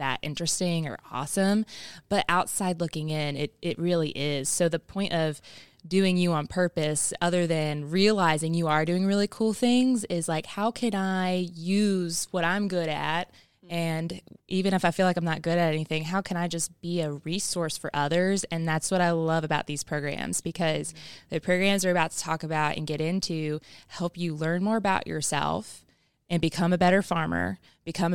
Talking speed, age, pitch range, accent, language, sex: 190 wpm, 20-39, 155-175 Hz, American, English, female